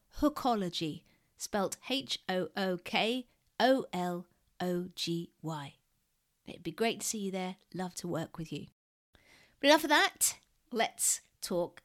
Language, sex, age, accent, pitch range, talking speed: English, female, 40-59, British, 175-225 Hz, 105 wpm